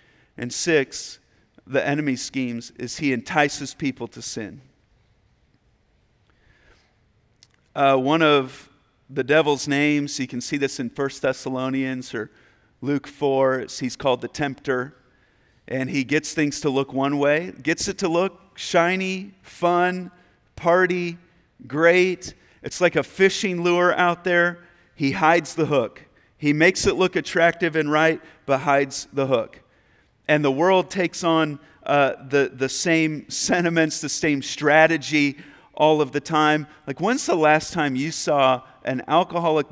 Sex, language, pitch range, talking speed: male, English, 135-165 Hz, 145 wpm